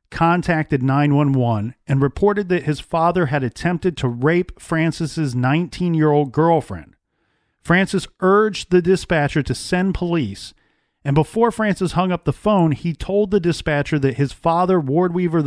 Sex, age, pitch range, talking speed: male, 40-59, 135-170 Hz, 145 wpm